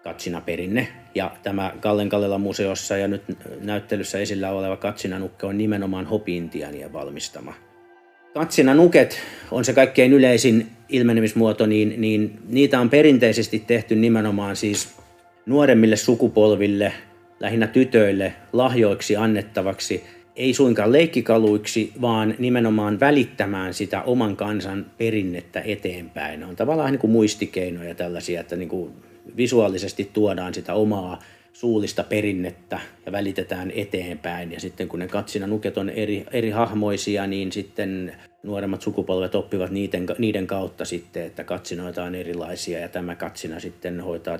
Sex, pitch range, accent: male, 90-110 Hz, native